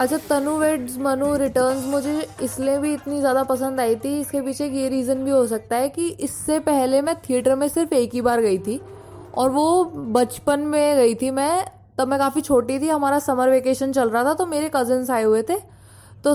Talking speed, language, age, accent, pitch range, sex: 210 wpm, Hindi, 20-39, native, 245-295 Hz, female